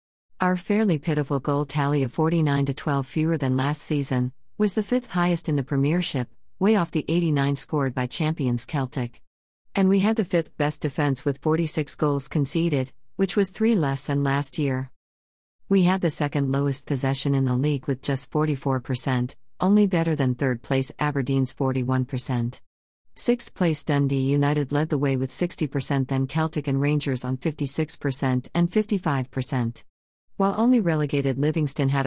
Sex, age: female, 50-69